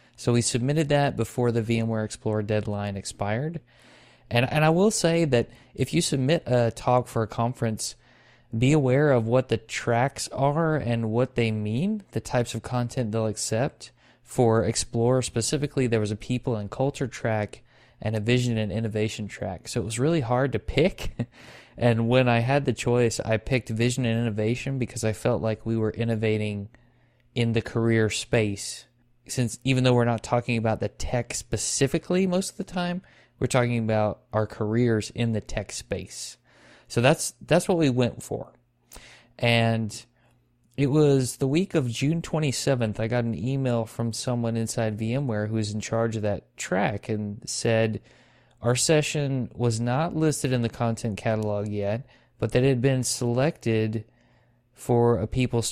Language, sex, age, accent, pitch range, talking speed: English, male, 20-39, American, 110-130 Hz, 170 wpm